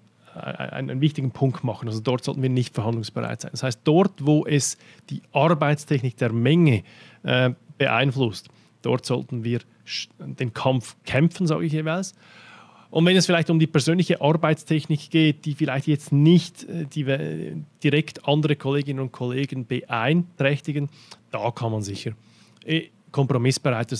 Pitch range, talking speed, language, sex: 125-155 Hz, 150 wpm, German, male